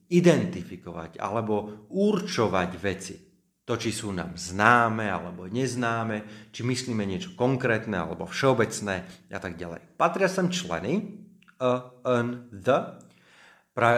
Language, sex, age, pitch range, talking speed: Slovak, male, 30-49, 100-140 Hz, 115 wpm